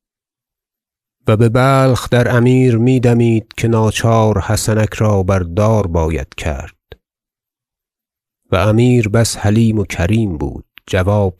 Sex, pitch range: male, 105-125 Hz